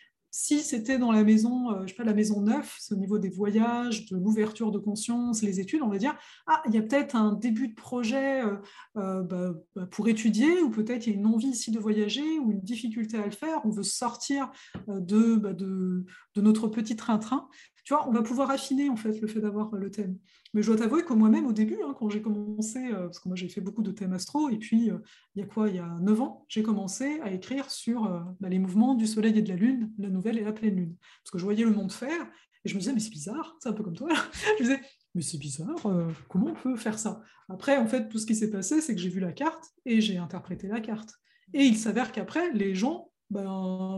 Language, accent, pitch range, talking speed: French, French, 205-250 Hz, 260 wpm